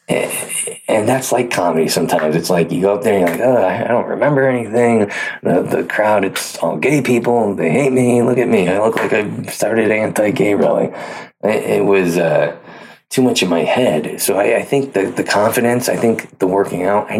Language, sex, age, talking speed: English, male, 20-39, 215 wpm